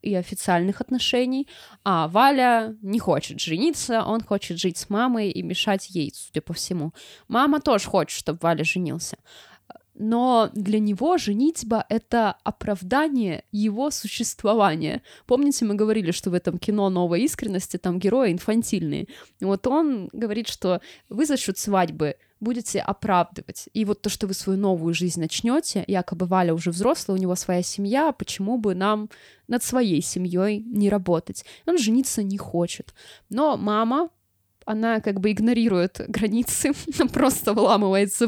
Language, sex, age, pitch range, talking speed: Russian, female, 20-39, 190-250 Hz, 145 wpm